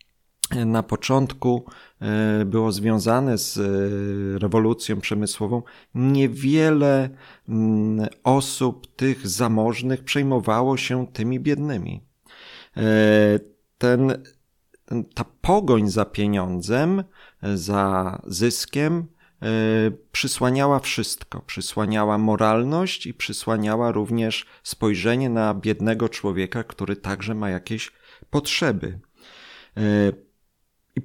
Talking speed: 75 wpm